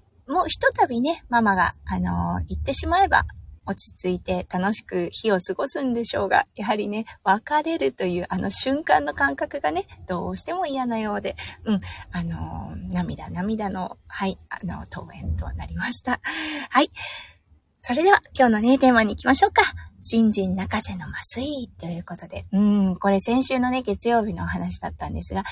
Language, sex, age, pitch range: Japanese, female, 20-39, 185-290 Hz